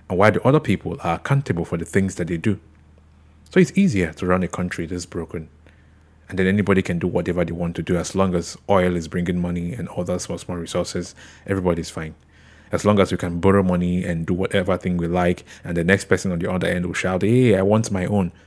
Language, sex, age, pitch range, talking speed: English, male, 30-49, 85-100 Hz, 240 wpm